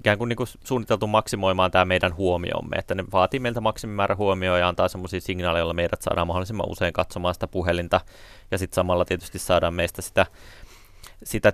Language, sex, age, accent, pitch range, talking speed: Finnish, male, 30-49, native, 90-105 Hz, 180 wpm